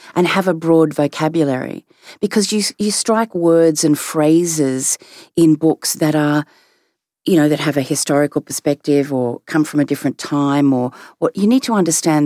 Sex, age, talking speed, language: female, 40-59, 170 wpm, English